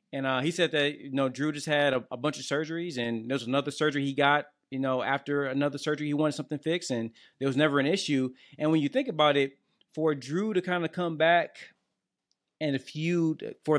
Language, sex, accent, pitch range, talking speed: English, male, American, 140-185 Hz, 230 wpm